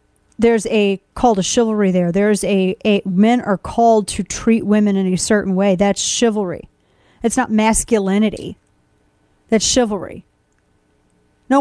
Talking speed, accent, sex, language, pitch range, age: 140 wpm, American, female, English, 200-245 Hz, 30-49